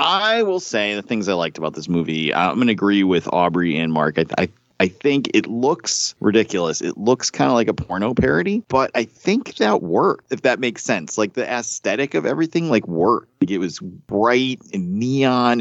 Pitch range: 90-125 Hz